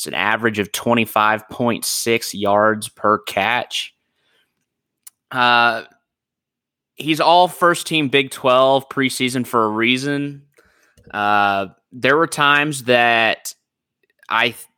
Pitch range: 110-130 Hz